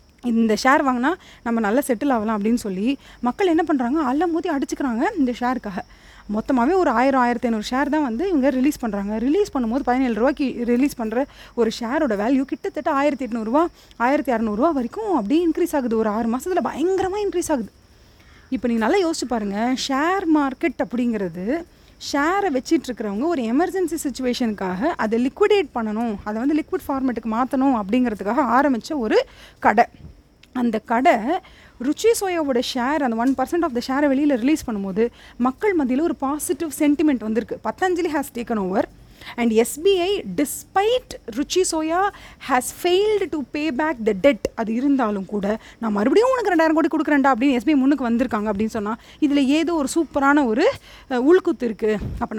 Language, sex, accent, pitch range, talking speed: Tamil, female, native, 235-320 Hz, 155 wpm